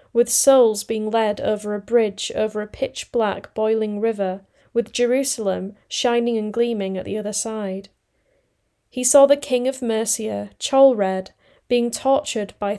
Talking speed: 145 wpm